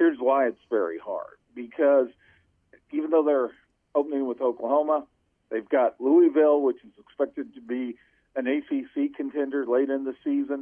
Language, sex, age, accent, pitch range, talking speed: English, male, 50-69, American, 125-165 Hz, 155 wpm